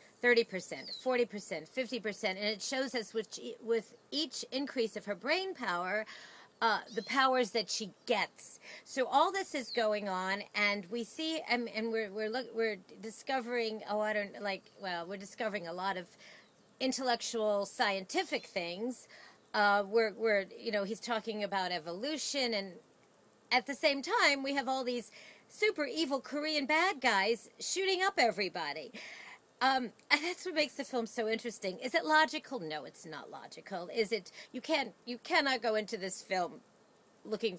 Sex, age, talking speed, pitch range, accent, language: female, 40-59, 165 wpm, 200-265 Hz, American, English